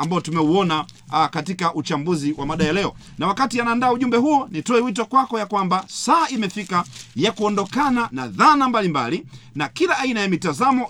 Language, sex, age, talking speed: Swahili, male, 40-59, 175 wpm